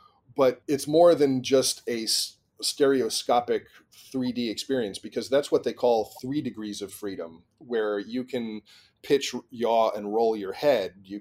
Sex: male